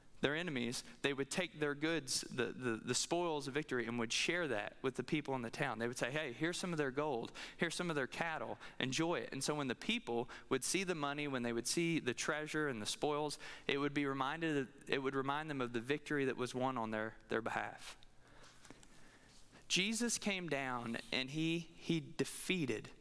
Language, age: English, 20-39